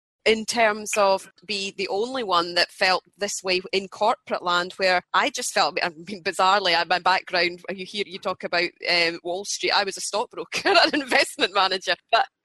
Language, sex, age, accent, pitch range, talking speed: English, female, 30-49, British, 185-230 Hz, 190 wpm